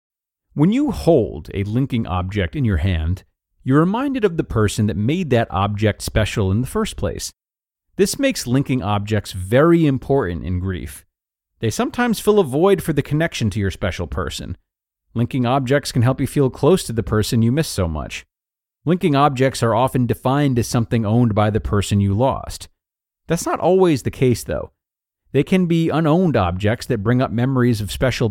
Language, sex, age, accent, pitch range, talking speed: English, male, 40-59, American, 100-145 Hz, 185 wpm